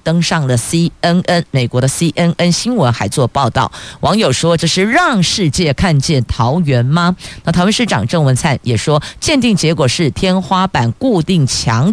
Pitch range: 130-175 Hz